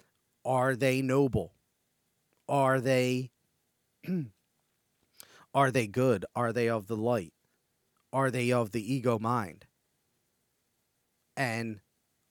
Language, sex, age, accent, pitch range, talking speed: English, male, 40-59, American, 115-140 Hz, 95 wpm